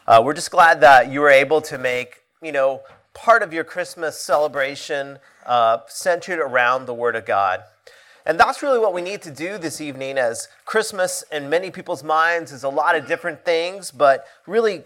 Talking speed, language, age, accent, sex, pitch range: 195 wpm, English, 30-49, American, male, 130-180 Hz